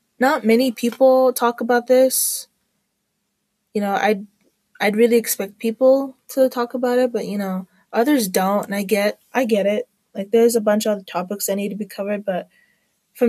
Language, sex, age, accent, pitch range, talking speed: English, female, 20-39, American, 200-235 Hz, 185 wpm